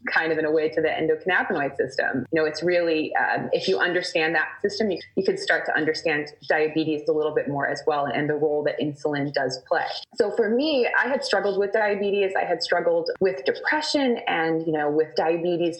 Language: English